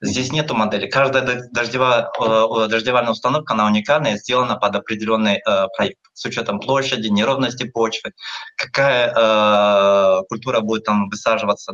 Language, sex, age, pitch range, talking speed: Russian, male, 20-39, 110-135 Hz, 140 wpm